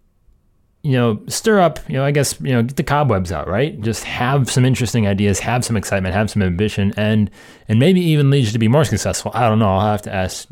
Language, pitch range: English, 100-130 Hz